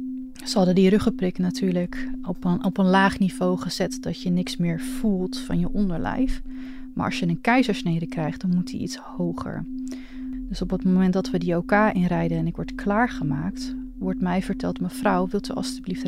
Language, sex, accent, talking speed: Dutch, female, Dutch, 185 wpm